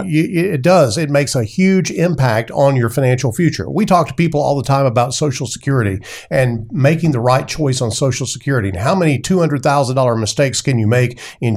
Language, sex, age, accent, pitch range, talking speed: English, male, 50-69, American, 120-155 Hz, 195 wpm